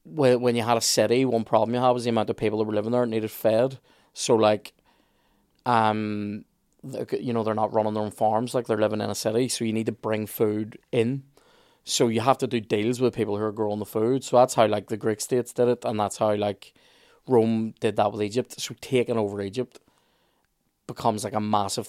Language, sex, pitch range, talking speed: English, male, 105-120 Hz, 230 wpm